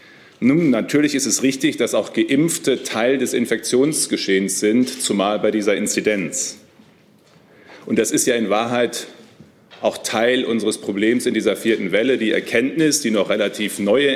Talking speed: 155 wpm